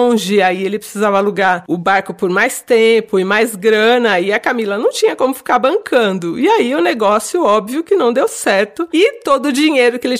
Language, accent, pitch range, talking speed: Portuguese, Brazilian, 195-270 Hz, 205 wpm